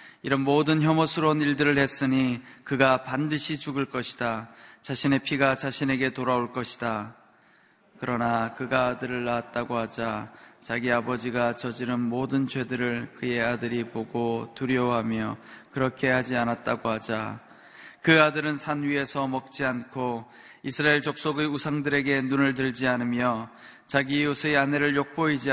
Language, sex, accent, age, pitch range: Korean, male, native, 20-39, 115-140 Hz